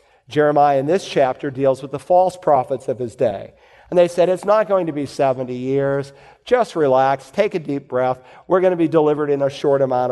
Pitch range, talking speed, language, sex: 140-180 Hz, 220 wpm, English, male